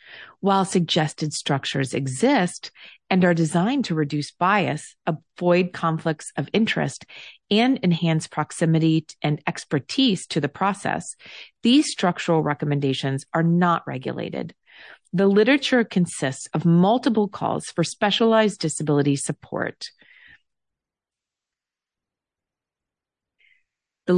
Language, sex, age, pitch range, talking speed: English, female, 30-49, 155-210 Hz, 95 wpm